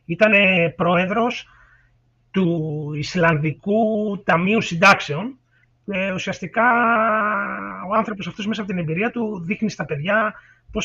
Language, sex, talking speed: Greek, male, 110 wpm